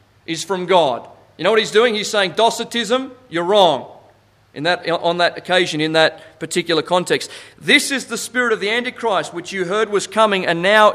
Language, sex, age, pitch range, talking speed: English, male, 40-59, 130-195 Hz, 195 wpm